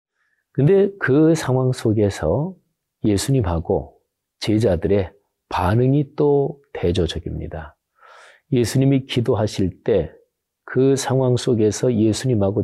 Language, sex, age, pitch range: Korean, male, 40-59, 95-135 Hz